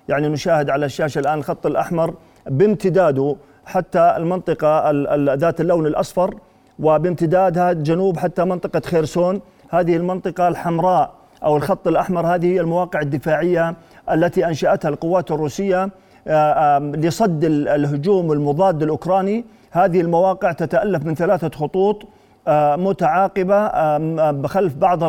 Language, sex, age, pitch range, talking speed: Arabic, male, 40-59, 160-190 Hz, 105 wpm